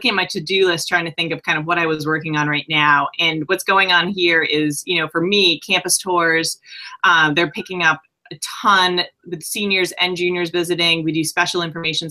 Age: 20-39